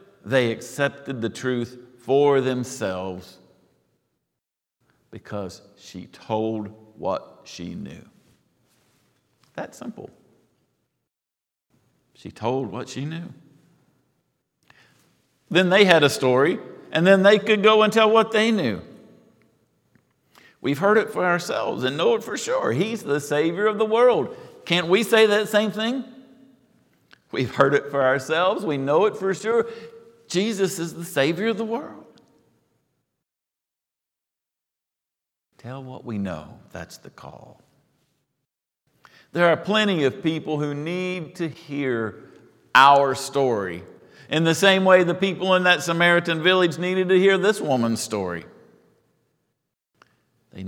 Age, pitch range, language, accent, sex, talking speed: 50-69, 130-195 Hz, English, American, male, 130 wpm